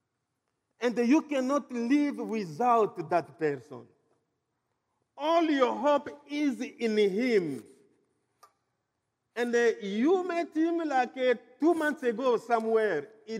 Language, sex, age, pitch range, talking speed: English, male, 50-69, 210-330 Hz, 105 wpm